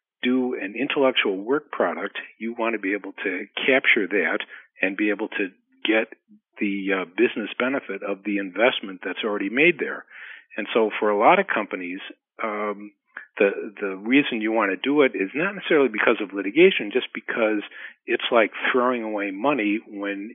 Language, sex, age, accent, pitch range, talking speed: English, male, 50-69, American, 100-120 Hz, 175 wpm